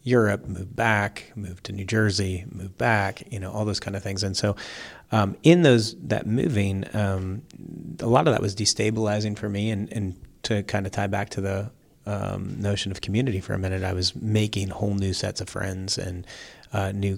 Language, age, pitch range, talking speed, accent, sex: English, 30-49, 95-110 Hz, 210 wpm, American, male